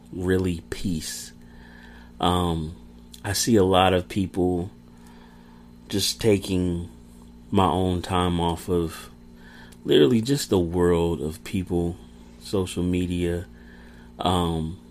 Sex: male